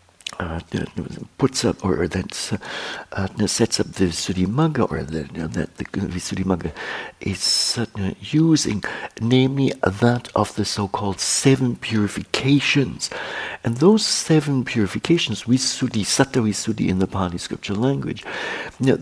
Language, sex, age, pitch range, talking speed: English, male, 60-79, 95-130 Hz, 130 wpm